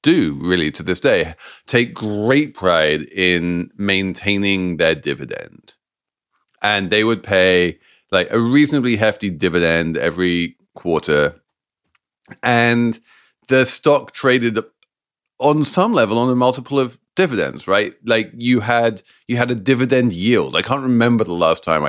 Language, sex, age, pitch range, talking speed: English, male, 30-49, 90-125 Hz, 135 wpm